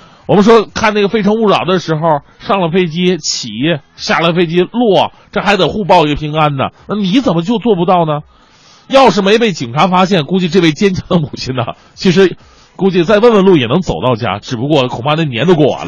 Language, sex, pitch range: Chinese, male, 145-200 Hz